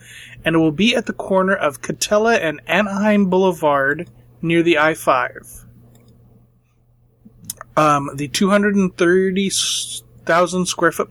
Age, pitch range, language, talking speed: 30-49, 125-175 Hz, English, 90 wpm